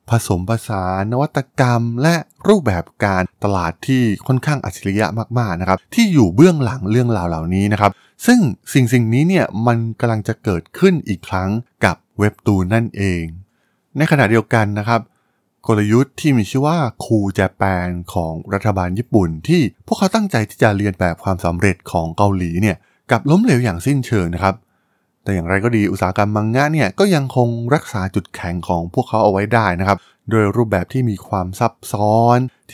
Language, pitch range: Thai, 95-125 Hz